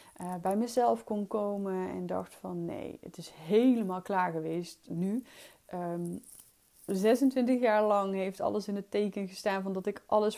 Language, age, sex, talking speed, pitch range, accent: Dutch, 20-39, female, 170 wpm, 180-220 Hz, Dutch